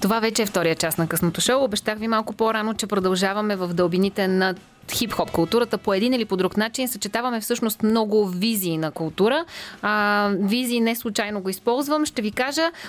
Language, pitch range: Bulgarian, 185-230 Hz